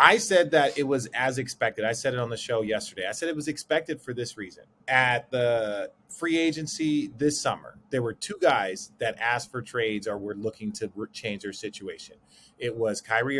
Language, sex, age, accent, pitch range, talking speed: English, male, 30-49, American, 110-145 Hz, 205 wpm